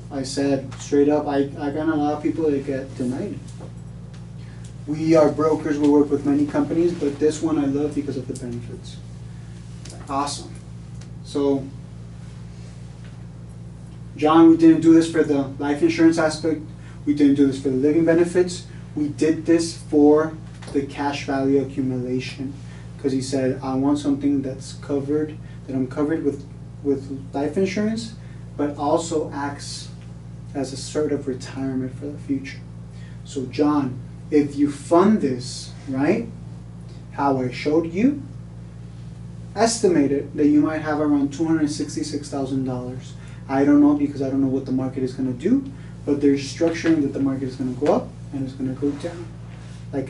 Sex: male